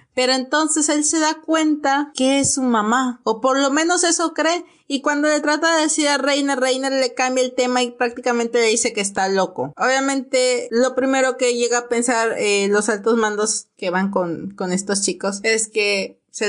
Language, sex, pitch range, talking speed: Spanish, female, 195-245 Hz, 205 wpm